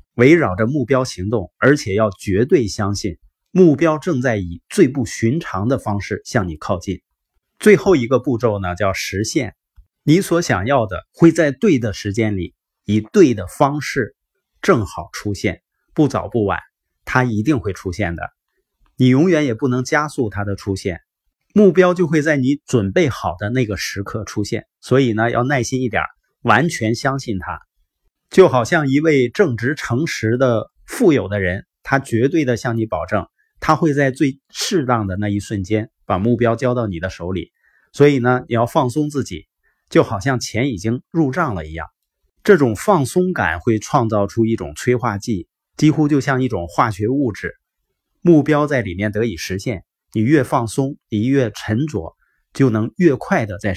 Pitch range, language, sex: 100-140 Hz, Chinese, male